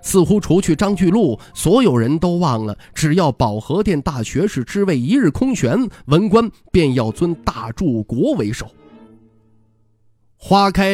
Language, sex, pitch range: Chinese, male, 115-195 Hz